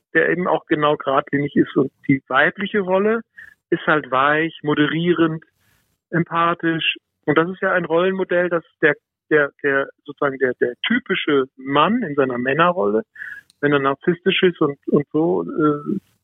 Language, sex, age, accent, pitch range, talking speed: German, male, 50-69, German, 140-185 Hz, 150 wpm